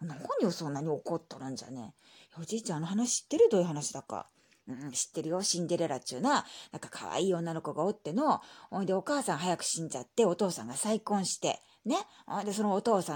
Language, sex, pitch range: Japanese, female, 165-230 Hz